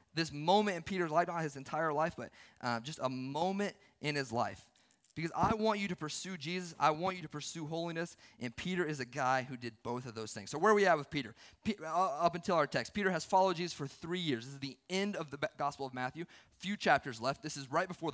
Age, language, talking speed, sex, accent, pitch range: 30-49, English, 250 wpm, male, American, 140-185 Hz